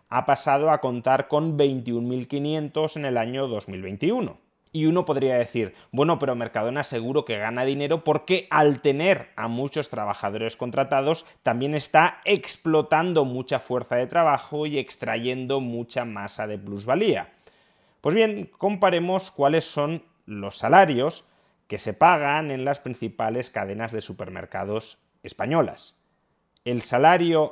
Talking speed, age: 130 wpm, 30-49